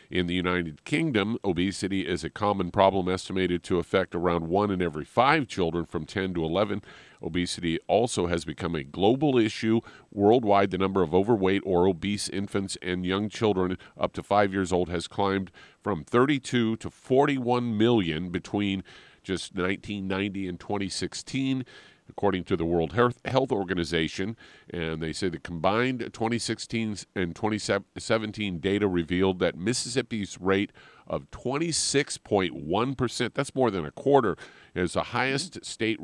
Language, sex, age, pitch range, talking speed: English, male, 50-69, 90-110 Hz, 145 wpm